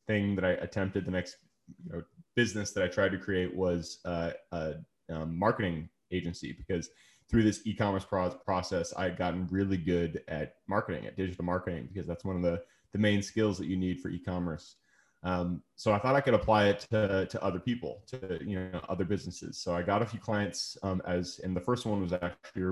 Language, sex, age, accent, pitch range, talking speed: English, male, 30-49, American, 90-105 Hz, 215 wpm